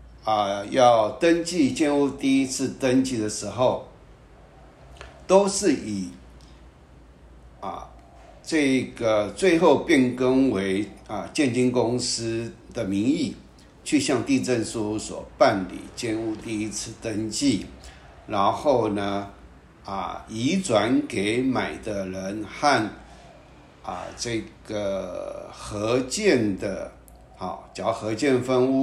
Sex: male